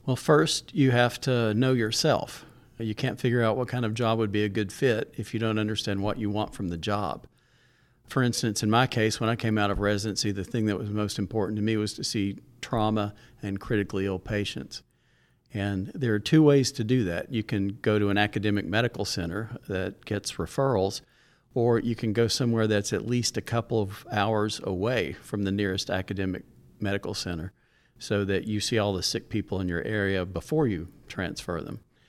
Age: 50-69